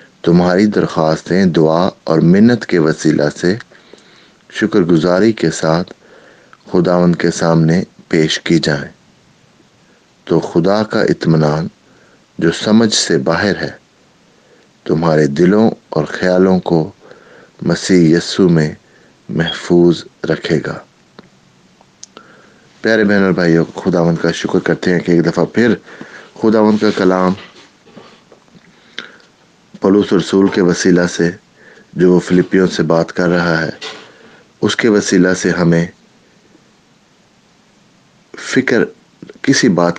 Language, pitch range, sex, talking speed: English, 85-100 Hz, male, 110 wpm